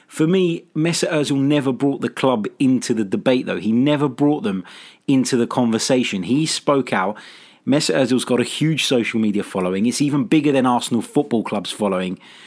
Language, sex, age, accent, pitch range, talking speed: English, male, 30-49, British, 120-150 Hz, 185 wpm